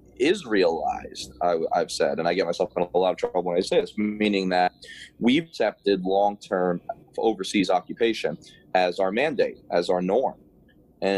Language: English